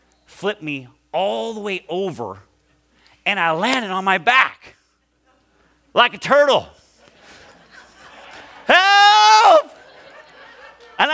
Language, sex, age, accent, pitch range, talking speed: English, male, 30-49, American, 220-275 Hz, 90 wpm